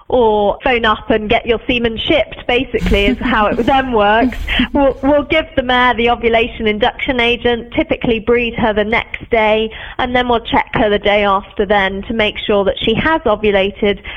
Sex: female